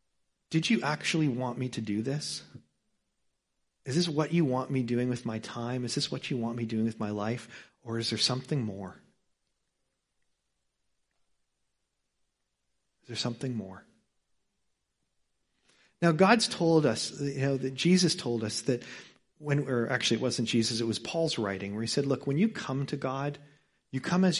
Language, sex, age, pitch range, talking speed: English, male, 40-59, 115-150 Hz, 170 wpm